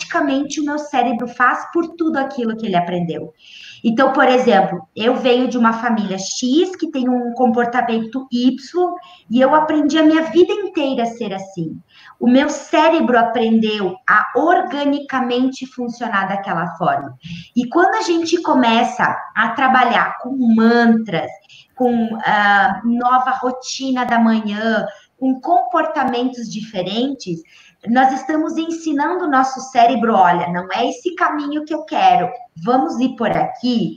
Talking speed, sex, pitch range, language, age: 140 wpm, female, 225-290 Hz, Portuguese, 20-39